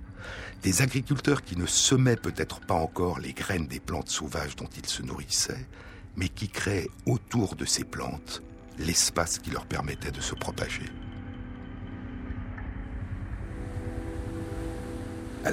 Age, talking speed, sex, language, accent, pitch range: 60-79, 125 wpm, male, French, French, 85-100 Hz